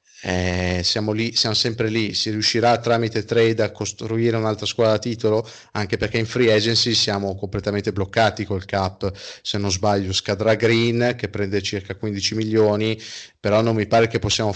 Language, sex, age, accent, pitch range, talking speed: Italian, male, 30-49, native, 100-120 Hz, 170 wpm